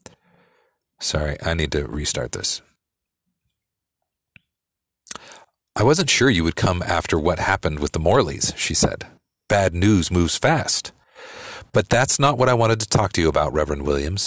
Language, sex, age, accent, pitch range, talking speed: English, male, 40-59, American, 85-130 Hz, 155 wpm